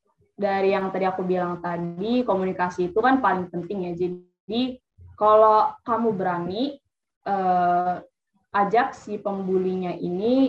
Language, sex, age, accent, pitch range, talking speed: Indonesian, female, 20-39, native, 185-235 Hz, 120 wpm